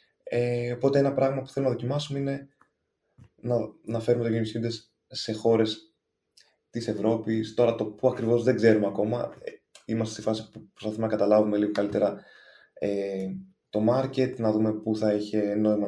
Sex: male